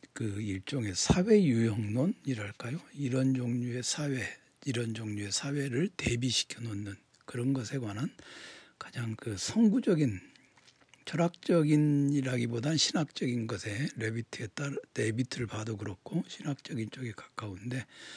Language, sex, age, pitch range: Korean, male, 60-79, 110-145 Hz